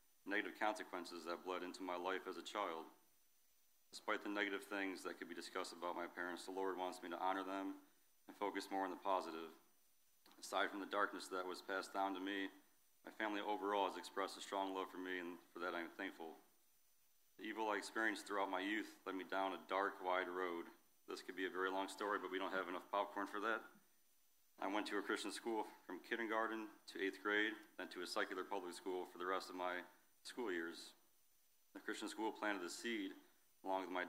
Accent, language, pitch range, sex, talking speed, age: American, English, 90-100 Hz, male, 215 wpm, 40-59